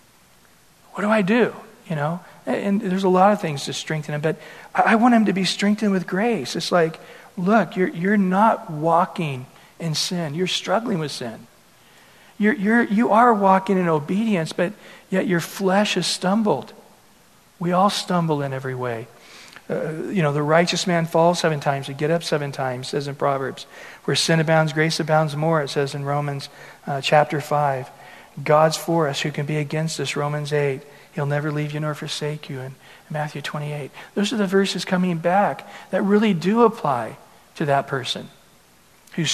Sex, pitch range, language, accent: male, 150-200 Hz, English, American